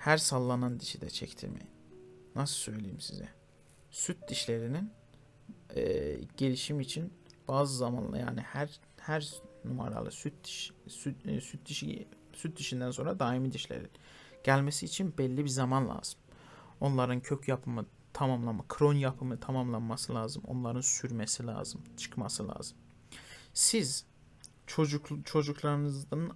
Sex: male